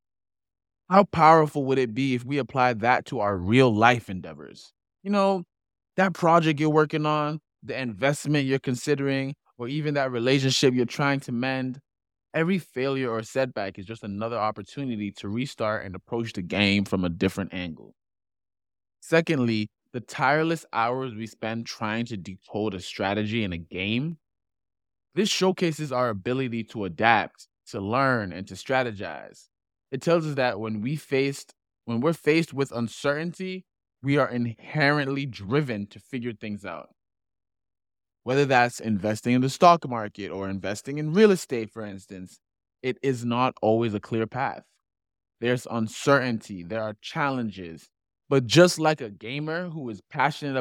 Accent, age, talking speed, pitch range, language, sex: American, 20-39, 155 wpm, 100-140 Hz, English, male